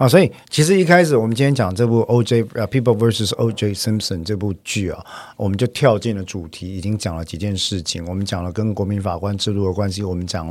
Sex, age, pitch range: male, 50-69, 90-115 Hz